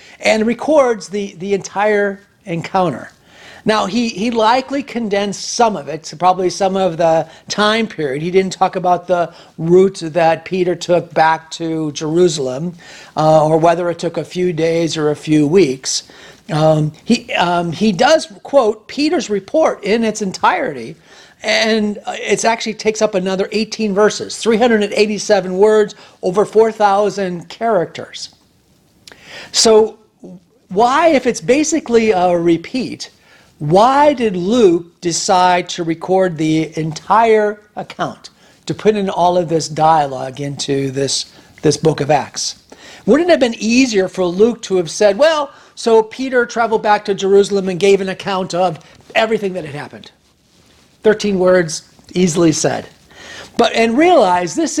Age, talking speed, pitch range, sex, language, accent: 40-59, 140 wpm, 170-220 Hz, male, English, American